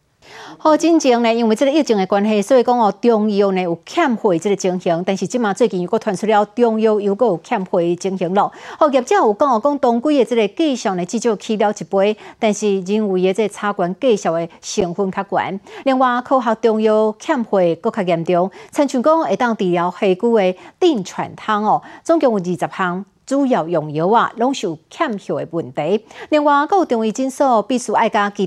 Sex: female